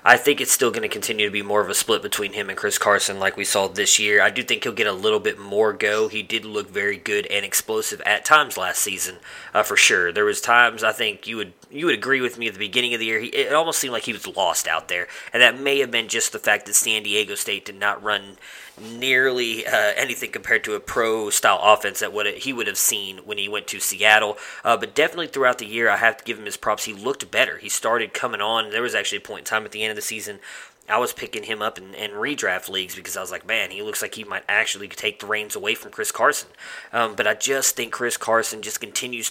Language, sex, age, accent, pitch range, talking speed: English, male, 20-39, American, 105-125 Hz, 270 wpm